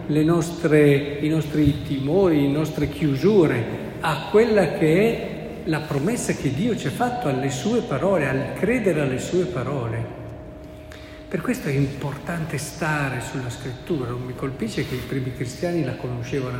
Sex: male